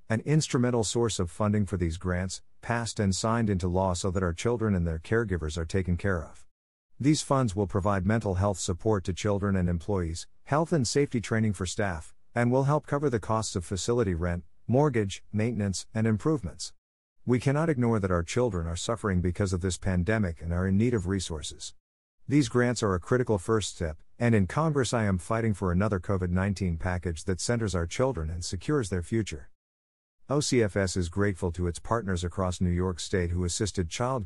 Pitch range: 90-115 Hz